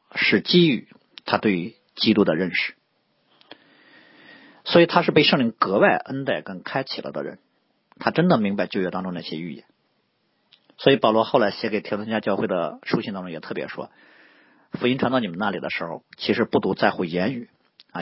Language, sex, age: Chinese, male, 50-69